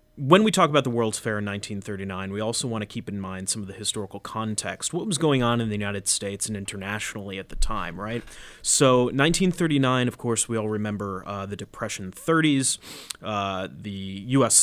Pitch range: 100-125 Hz